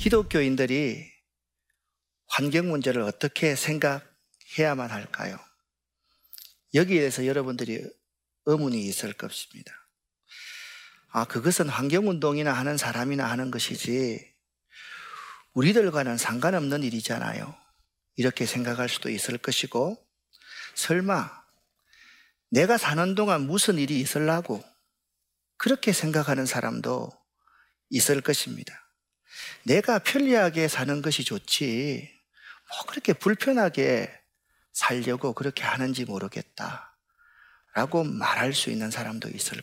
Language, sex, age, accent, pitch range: Korean, male, 40-59, native, 125-195 Hz